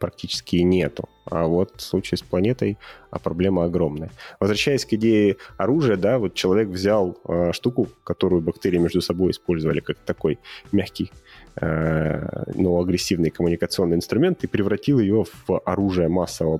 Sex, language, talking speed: male, Russian, 140 wpm